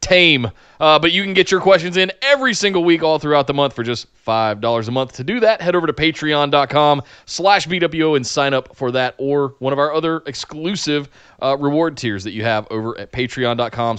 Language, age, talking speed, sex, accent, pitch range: English, 20-39, 215 wpm, male, American, 125-170 Hz